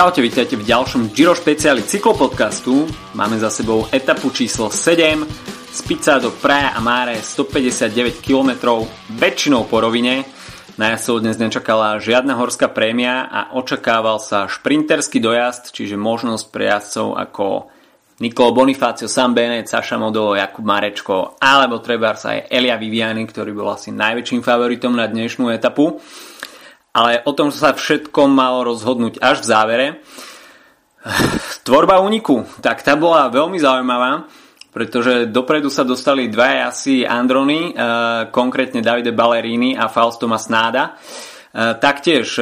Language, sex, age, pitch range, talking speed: Slovak, male, 30-49, 115-130 Hz, 130 wpm